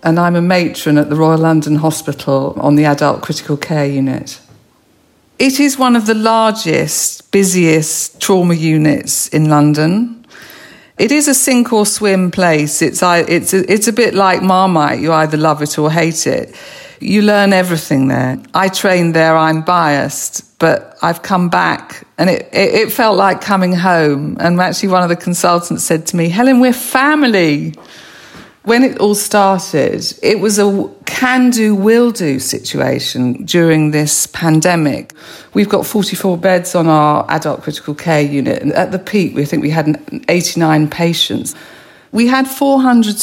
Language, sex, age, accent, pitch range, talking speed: English, female, 50-69, British, 155-200 Hz, 165 wpm